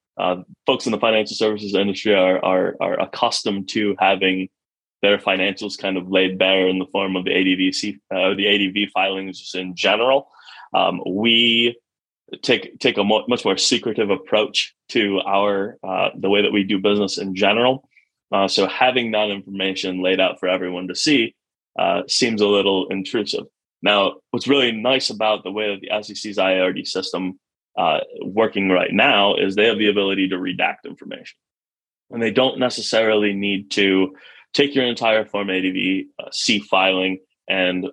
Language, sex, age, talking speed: English, male, 20-39, 170 wpm